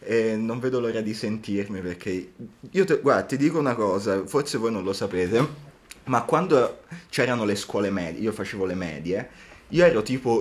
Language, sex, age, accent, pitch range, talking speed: Italian, male, 20-39, native, 95-115 Hz, 185 wpm